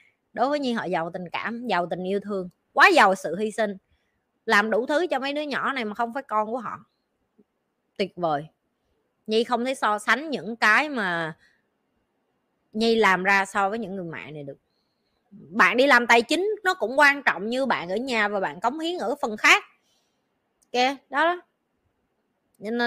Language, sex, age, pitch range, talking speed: Vietnamese, female, 20-39, 195-260 Hz, 195 wpm